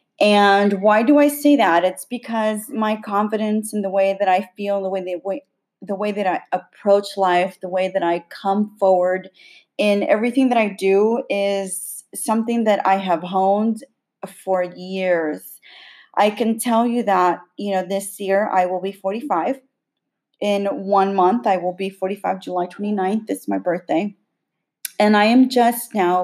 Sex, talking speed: female, 165 wpm